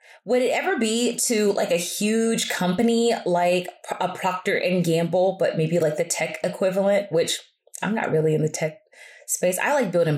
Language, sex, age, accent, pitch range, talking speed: English, female, 20-39, American, 180-255 Hz, 185 wpm